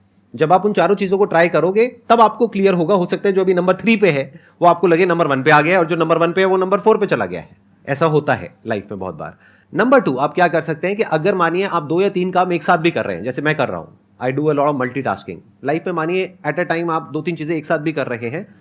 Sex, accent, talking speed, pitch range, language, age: male, native, 315 wpm, 140-220 Hz, Hindi, 30-49